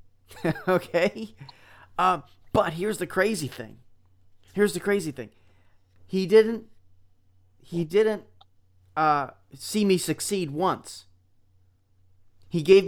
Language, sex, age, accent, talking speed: English, male, 30-49, American, 100 wpm